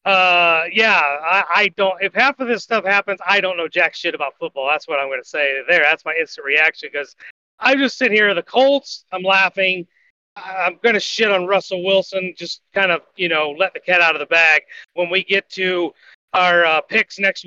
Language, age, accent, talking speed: English, 30-49, American, 215 wpm